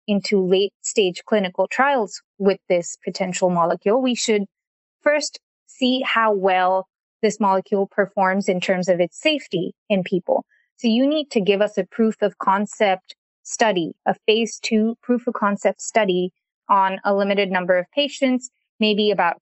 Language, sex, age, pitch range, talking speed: English, female, 20-39, 190-225 Hz, 160 wpm